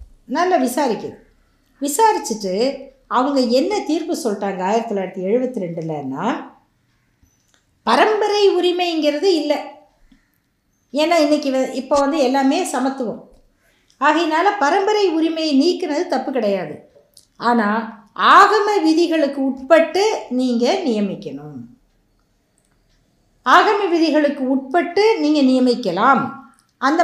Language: Tamil